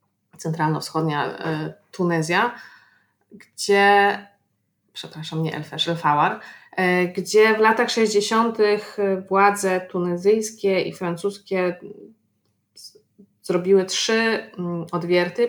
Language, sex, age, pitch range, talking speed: English, female, 20-39, 170-200 Hz, 70 wpm